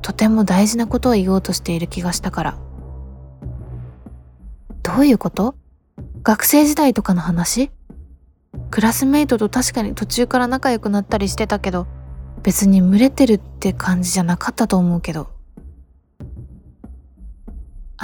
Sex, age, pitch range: female, 20-39, 170-235 Hz